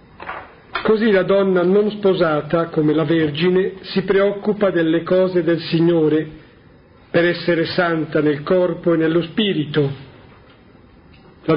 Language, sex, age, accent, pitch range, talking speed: Italian, male, 50-69, native, 155-185 Hz, 120 wpm